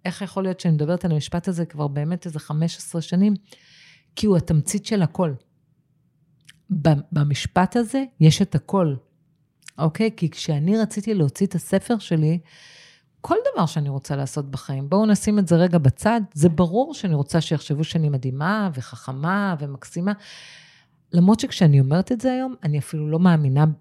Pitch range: 155-205 Hz